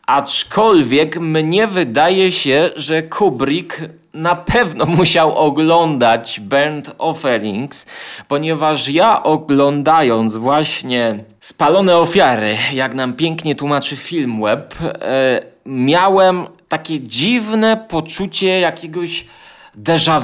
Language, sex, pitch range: Polish, male, 135-185 Hz